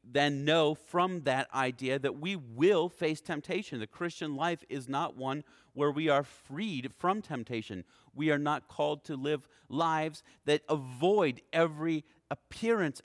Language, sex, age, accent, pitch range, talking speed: English, male, 40-59, American, 135-175 Hz, 150 wpm